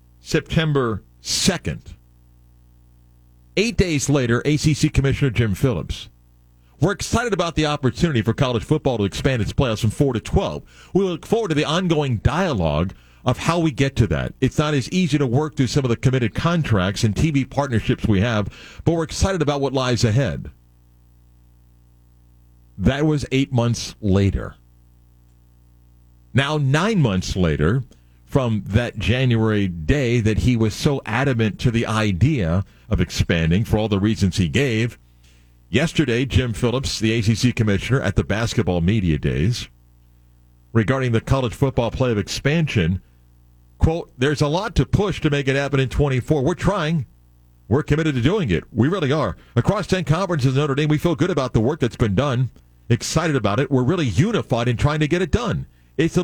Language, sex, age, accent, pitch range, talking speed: English, male, 50-69, American, 90-145 Hz, 170 wpm